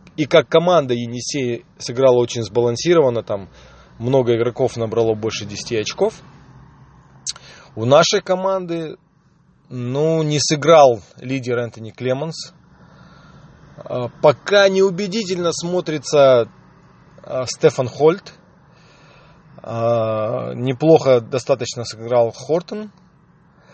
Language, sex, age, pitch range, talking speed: Russian, male, 20-39, 120-165 Hz, 80 wpm